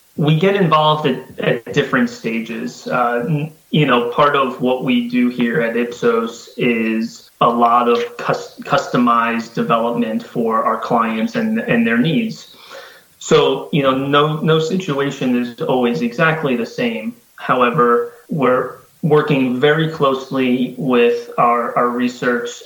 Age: 30-49